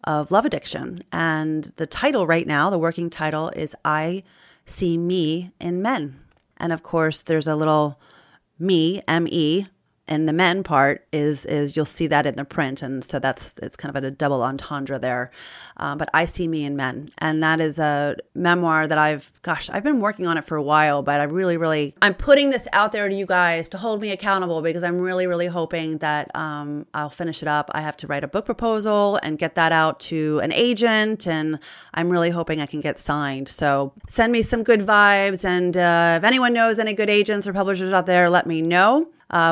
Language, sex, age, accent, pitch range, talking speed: English, female, 30-49, American, 155-195 Hz, 215 wpm